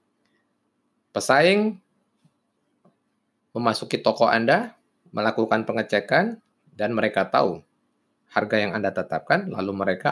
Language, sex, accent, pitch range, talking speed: Indonesian, male, native, 105-170 Hz, 90 wpm